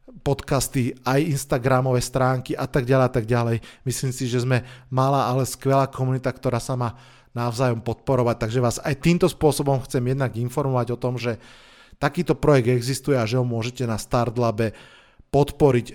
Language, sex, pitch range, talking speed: Slovak, male, 125-150 Hz, 160 wpm